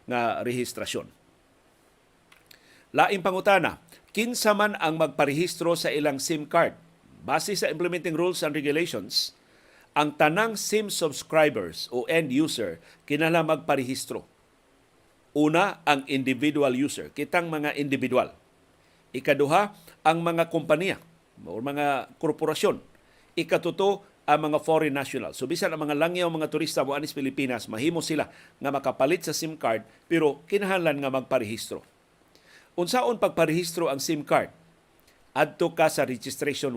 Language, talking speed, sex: Filipino, 120 wpm, male